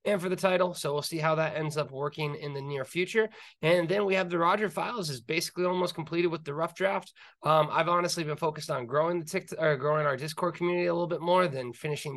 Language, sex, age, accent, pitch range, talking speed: English, male, 20-39, American, 140-175 Hz, 250 wpm